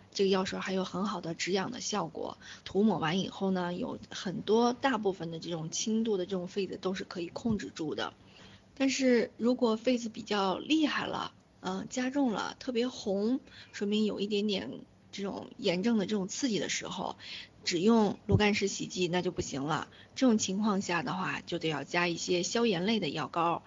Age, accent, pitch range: 20-39, native, 180-230 Hz